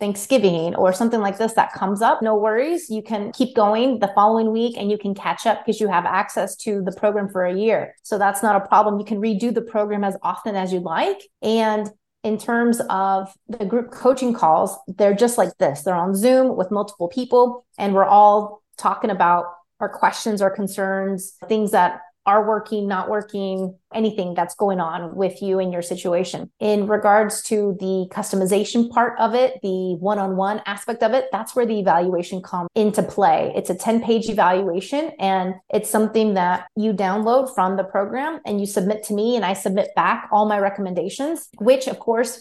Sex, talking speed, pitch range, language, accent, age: female, 195 wpm, 195-220 Hz, English, American, 30-49